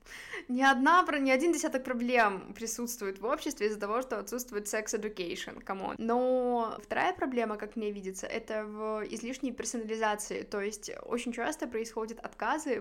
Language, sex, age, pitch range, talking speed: Russian, female, 20-39, 210-240 Hz, 145 wpm